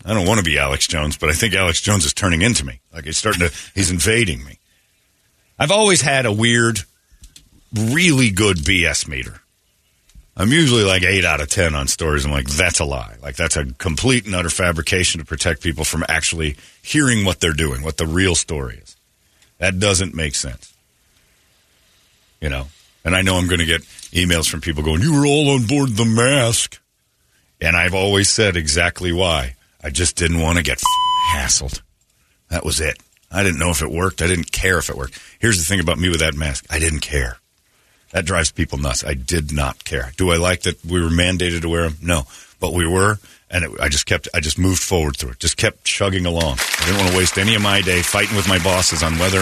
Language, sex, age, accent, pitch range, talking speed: English, male, 50-69, American, 80-95 Hz, 220 wpm